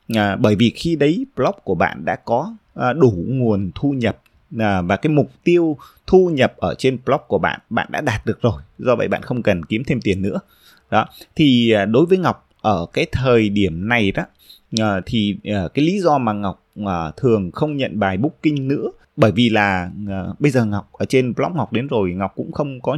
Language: Vietnamese